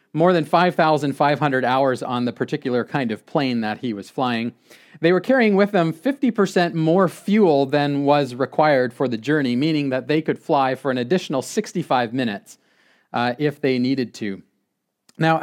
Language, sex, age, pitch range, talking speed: English, male, 40-59, 130-170 Hz, 170 wpm